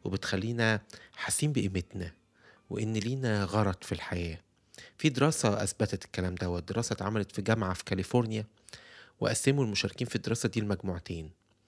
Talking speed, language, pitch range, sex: 130 wpm, Arabic, 100-120 Hz, male